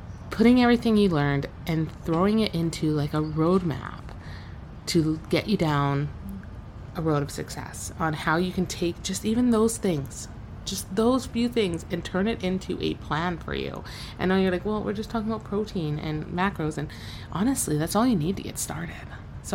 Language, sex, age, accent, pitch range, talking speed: English, female, 30-49, American, 145-185 Hz, 190 wpm